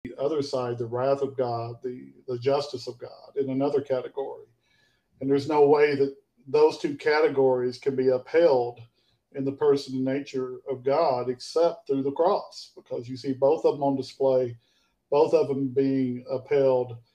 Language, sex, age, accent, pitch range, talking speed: English, male, 50-69, American, 125-145 Hz, 175 wpm